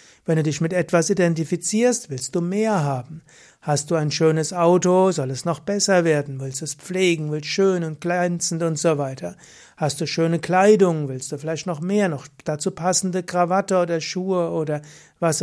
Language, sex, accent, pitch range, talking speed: German, male, German, 150-185 Hz, 185 wpm